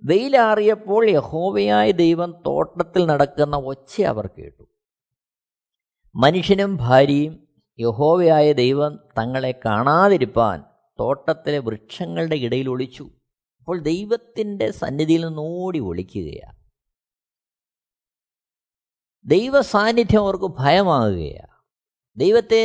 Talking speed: 70 wpm